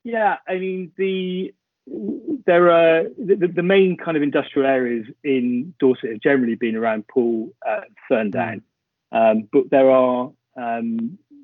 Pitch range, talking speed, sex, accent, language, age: 110-140 Hz, 130 wpm, male, British, English, 30-49